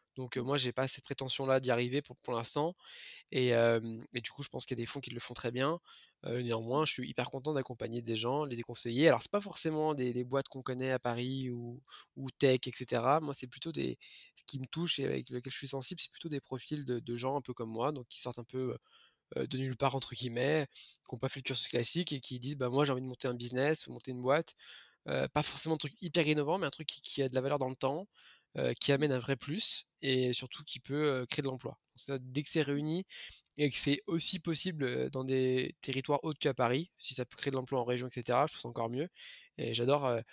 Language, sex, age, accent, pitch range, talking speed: French, male, 20-39, French, 125-145 Hz, 265 wpm